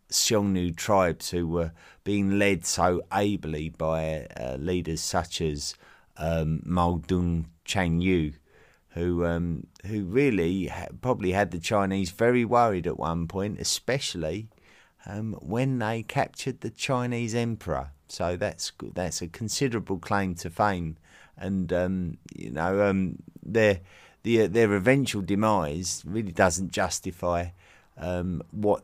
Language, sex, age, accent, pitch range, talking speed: English, male, 30-49, British, 85-100 Hz, 130 wpm